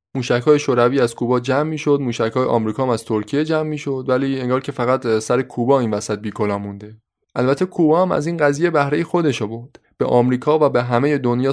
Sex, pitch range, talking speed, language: male, 115-150 Hz, 200 wpm, Persian